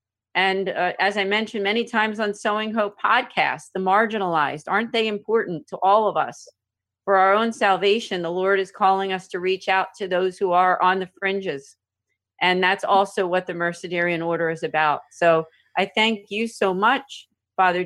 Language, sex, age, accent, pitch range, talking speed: English, female, 40-59, American, 180-200 Hz, 185 wpm